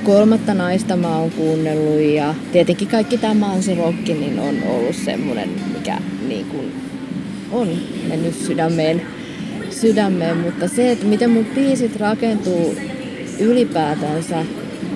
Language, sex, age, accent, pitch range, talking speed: Finnish, female, 30-49, native, 175-235 Hz, 115 wpm